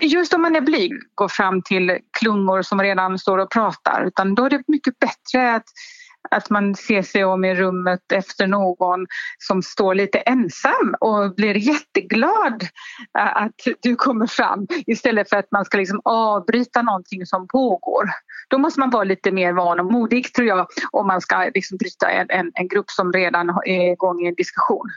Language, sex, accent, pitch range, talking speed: Swedish, female, native, 185-245 Hz, 185 wpm